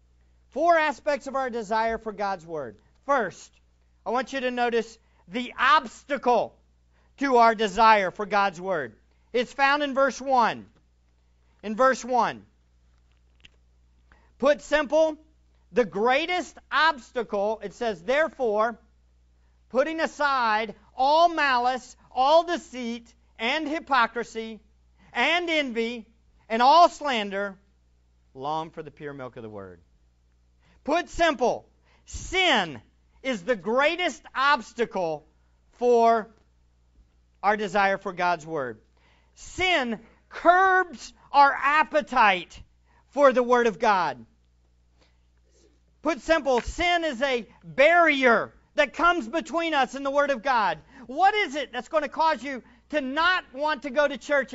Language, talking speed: English, 120 wpm